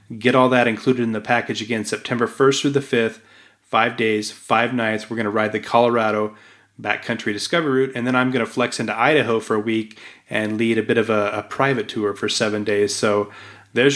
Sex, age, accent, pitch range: male, 30-49, American, 110-125 Hz